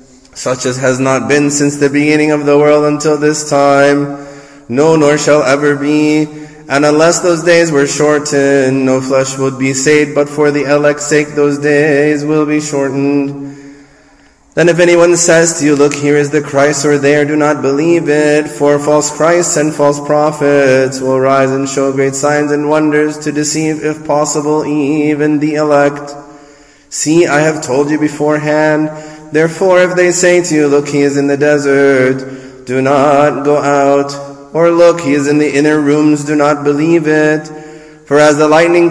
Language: English